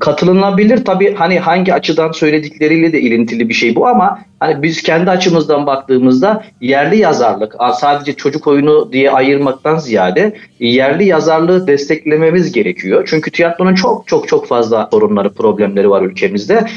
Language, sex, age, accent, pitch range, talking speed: Turkish, male, 40-59, native, 140-195 Hz, 140 wpm